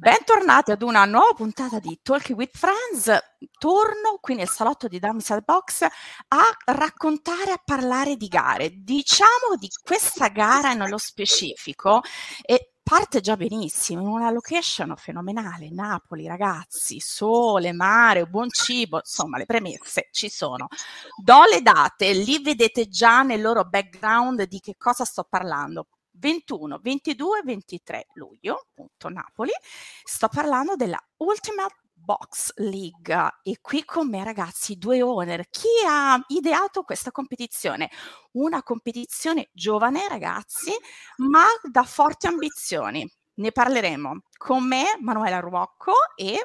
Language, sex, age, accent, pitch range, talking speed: Italian, female, 30-49, native, 210-315 Hz, 130 wpm